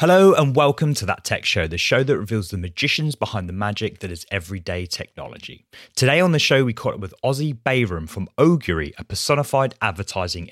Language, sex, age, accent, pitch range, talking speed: English, male, 30-49, British, 95-125 Hz, 200 wpm